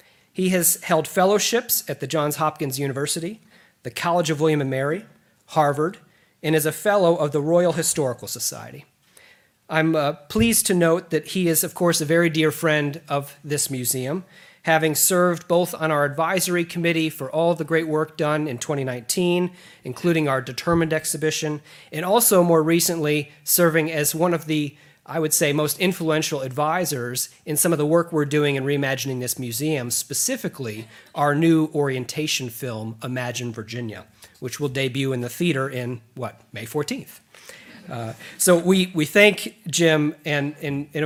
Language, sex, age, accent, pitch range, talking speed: English, male, 40-59, American, 135-170 Hz, 165 wpm